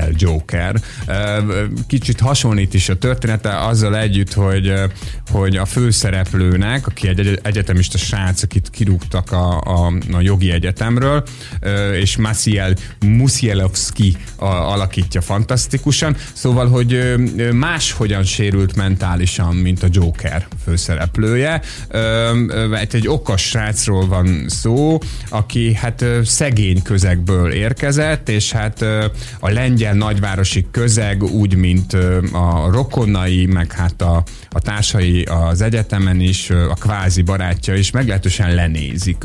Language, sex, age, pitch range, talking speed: Hungarian, male, 30-49, 95-120 Hz, 110 wpm